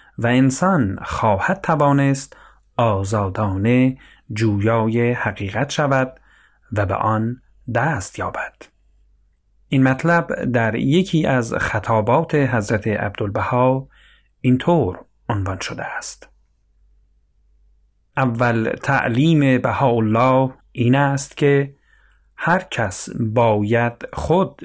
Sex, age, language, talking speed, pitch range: male, 40-59, Persian, 90 wpm, 105-135 Hz